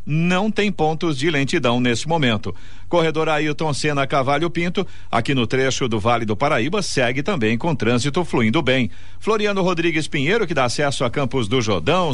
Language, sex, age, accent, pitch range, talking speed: Portuguese, male, 50-69, Brazilian, 120-160 Hz, 175 wpm